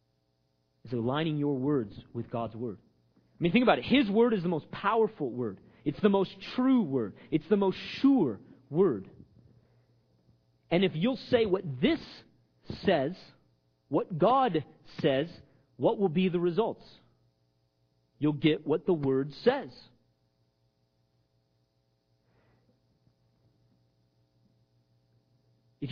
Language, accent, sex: English, American, male